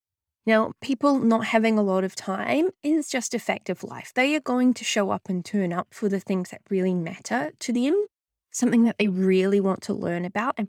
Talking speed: 225 wpm